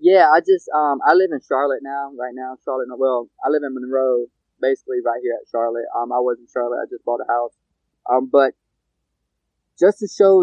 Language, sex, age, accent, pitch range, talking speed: English, male, 20-39, American, 125-155 Hz, 215 wpm